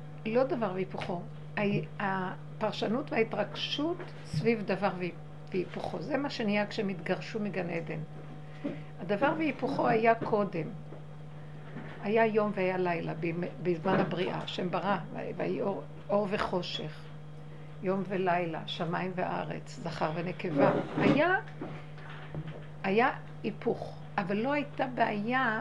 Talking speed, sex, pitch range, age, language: 100 wpm, female, 155-230 Hz, 60-79, Hebrew